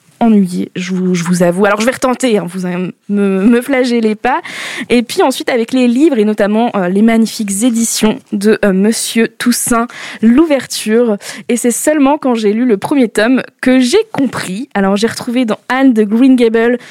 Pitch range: 205-245 Hz